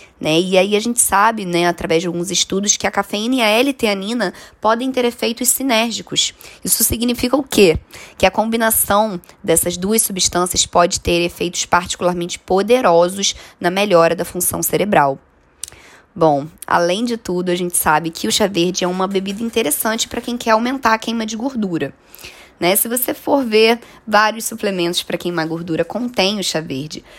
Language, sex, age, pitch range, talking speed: Portuguese, female, 20-39, 175-230 Hz, 170 wpm